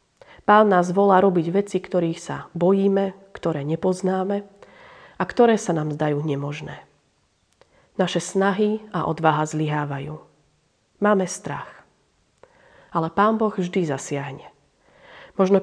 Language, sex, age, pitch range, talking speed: Slovak, female, 40-59, 170-205 Hz, 110 wpm